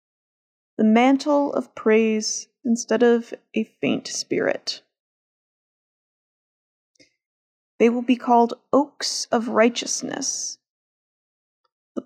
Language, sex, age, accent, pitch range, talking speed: English, female, 30-49, American, 230-260 Hz, 85 wpm